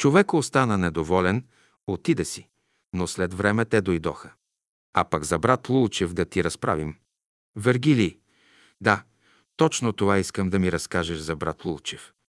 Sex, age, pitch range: male, 50-69, 95-125 Hz